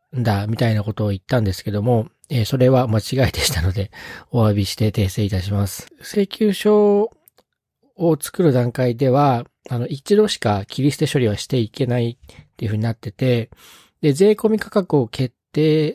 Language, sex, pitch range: Japanese, male, 115-165 Hz